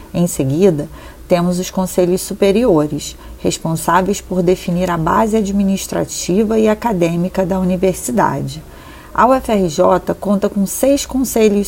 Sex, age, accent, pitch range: female, 40-59, Brazilian, 185-225 Hz